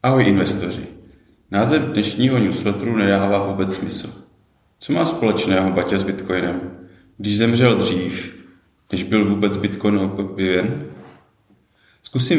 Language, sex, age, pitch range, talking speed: Czech, male, 30-49, 95-115 Hz, 110 wpm